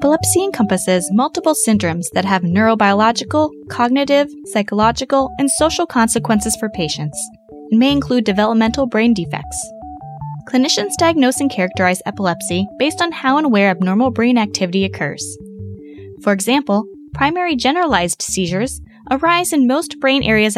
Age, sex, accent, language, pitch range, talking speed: 20-39, female, American, English, 180-270 Hz, 130 wpm